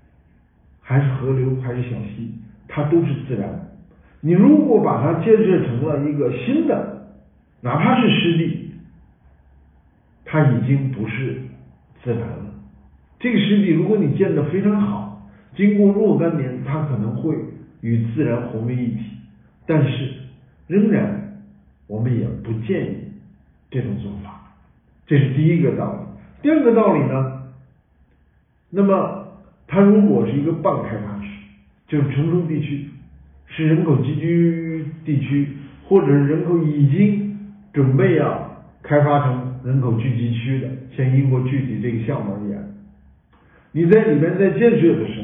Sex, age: male, 50-69